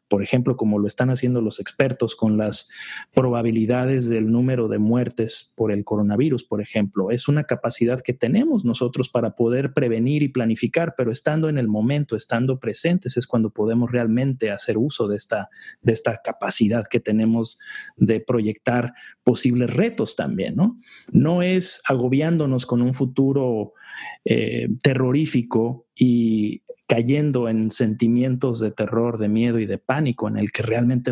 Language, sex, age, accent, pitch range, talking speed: Spanish, male, 40-59, Mexican, 110-135 Hz, 150 wpm